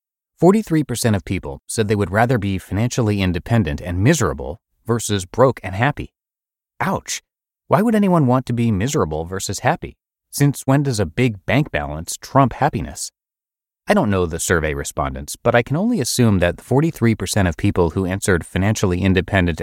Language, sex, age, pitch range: English, male, 30-49, 95-130 Hz